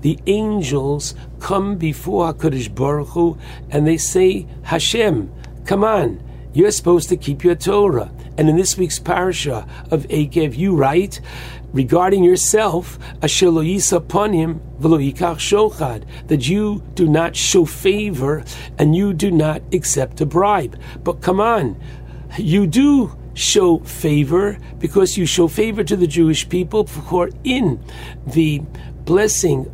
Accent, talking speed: American, 125 wpm